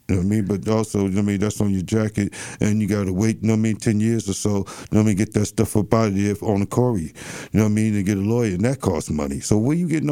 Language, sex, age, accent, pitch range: English, male, 50-69, American, 100-115 Hz